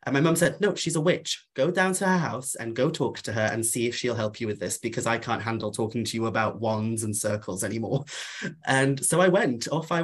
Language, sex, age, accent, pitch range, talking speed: English, male, 20-39, British, 115-145 Hz, 265 wpm